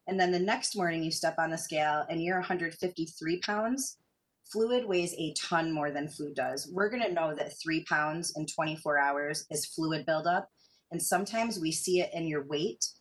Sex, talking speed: female, 195 wpm